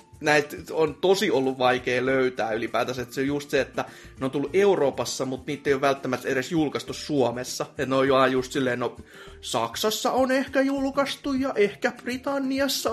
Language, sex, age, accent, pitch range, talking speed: Finnish, male, 30-49, native, 125-205 Hz, 170 wpm